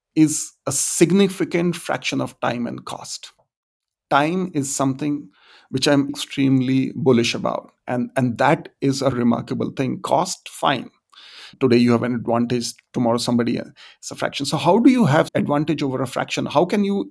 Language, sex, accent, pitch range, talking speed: English, male, Indian, 125-150 Hz, 165 wpm